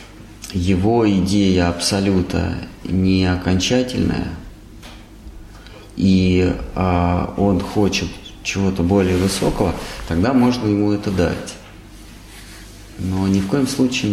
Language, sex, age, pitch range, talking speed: Russian, male, 30-49, 90-110 Hz, 95 wpm